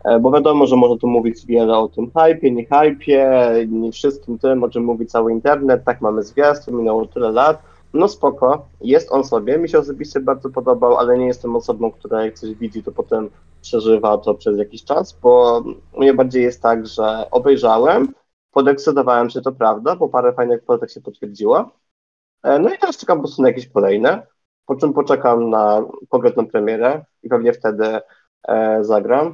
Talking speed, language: 180 wpm, Polish